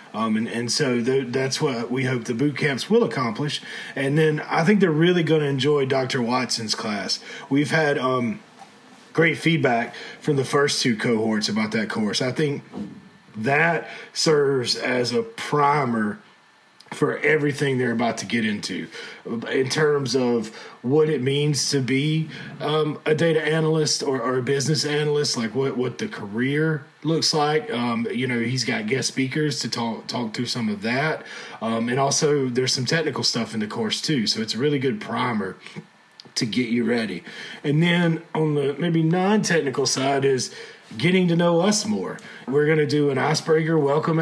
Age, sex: 30-49, male